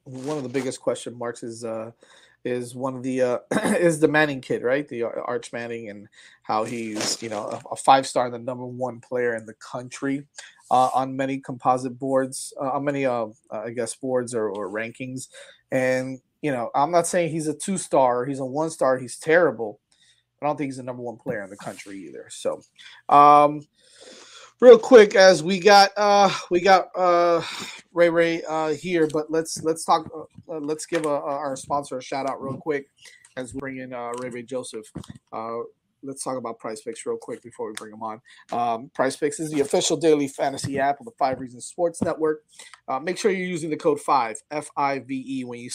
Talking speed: 210 wpm